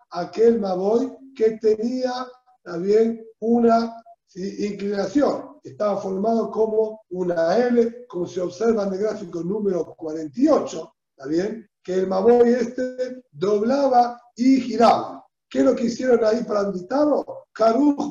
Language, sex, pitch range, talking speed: Spanish, male, 205-255 Hz, 125 wpm